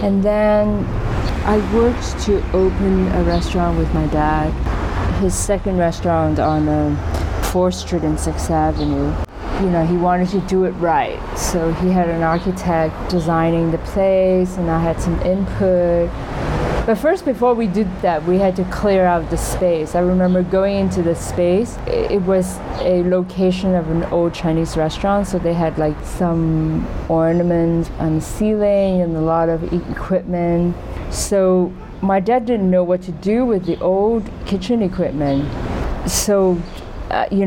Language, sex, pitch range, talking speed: English, female, 160-195 Hz, 160 wpm